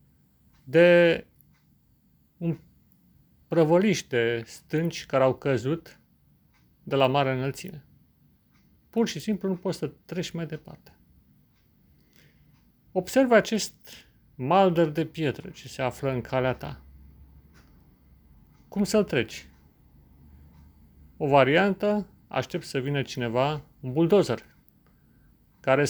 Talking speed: 100 wpm